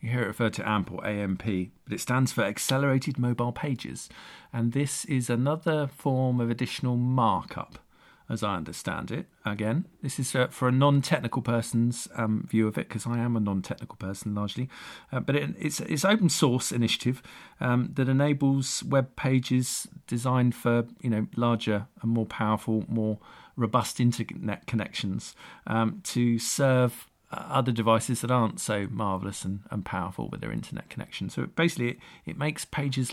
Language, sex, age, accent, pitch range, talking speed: English, male, 50-69, British, 115-140 Hz, 165 wpm